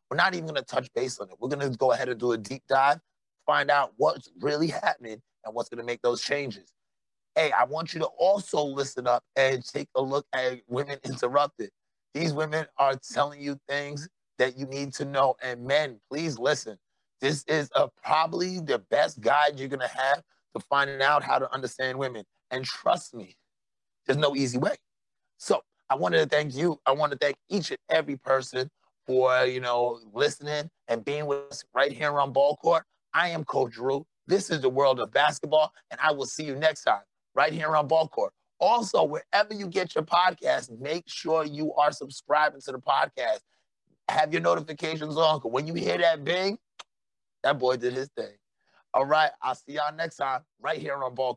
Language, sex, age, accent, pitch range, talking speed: English, male, 30-49, American, 130-155 Hz, 200 wpm